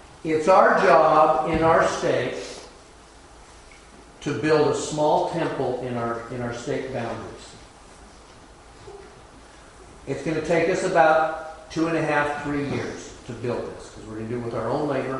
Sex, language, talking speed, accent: male, English, 160 wpm, American